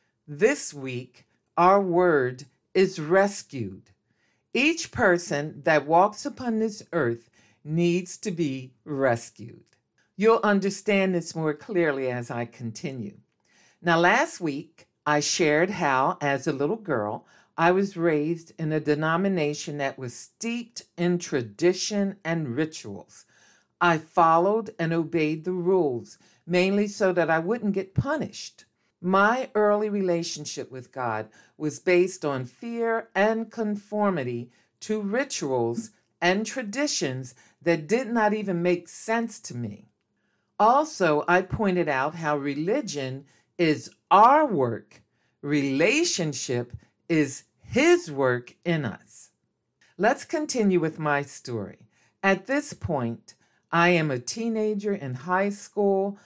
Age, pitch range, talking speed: 50-69, 145-200 Hz, 120 wpm